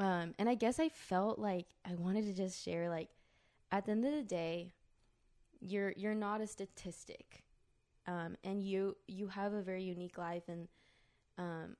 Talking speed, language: 180 wpm, English